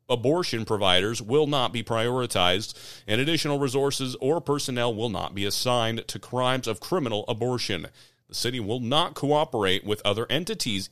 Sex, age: male, 40-59